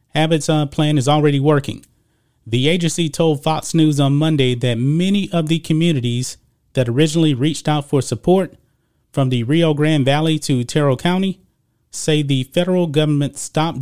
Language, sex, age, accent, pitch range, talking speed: English, male, 30-49, American, 130-160 Hz, 155 wpm